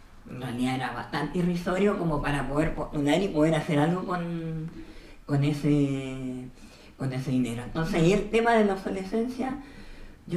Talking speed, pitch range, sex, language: 150 wpm, 130-185 Hz, female, Spanish